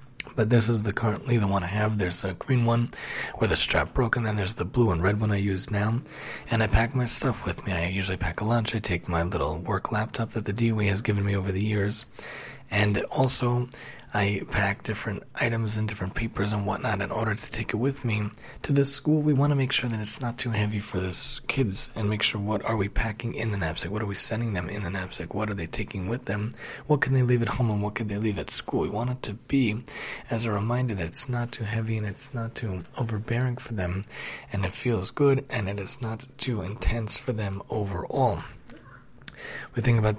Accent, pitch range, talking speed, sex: American, 100-120 Hz, 240 wpm, male